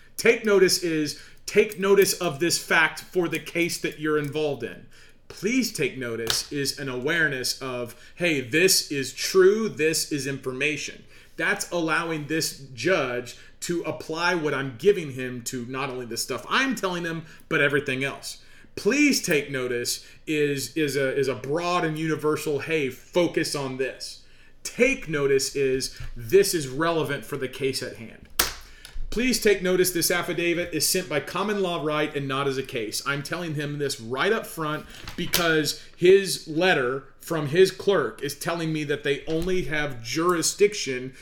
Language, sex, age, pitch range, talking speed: English, male, 30-49, 135-175 Hz, 165 wpm